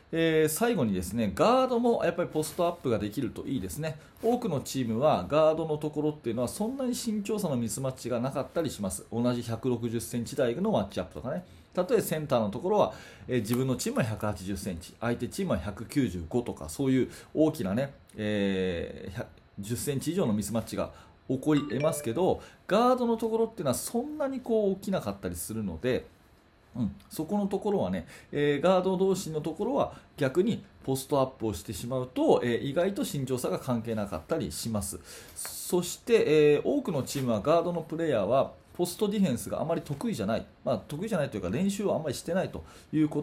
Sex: male